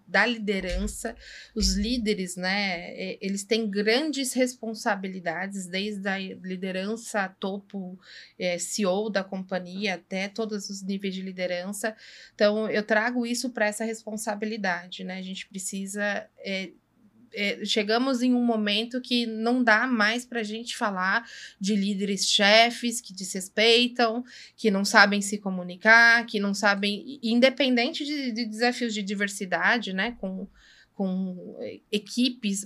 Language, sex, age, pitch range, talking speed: Portuguese, female, 20-39, 195-230 Hz, 125 wpm